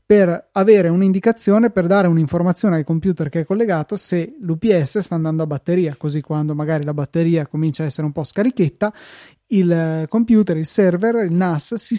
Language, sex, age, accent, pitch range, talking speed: Italian, male, 20-39, native, 155-185 Hz, 175 wpm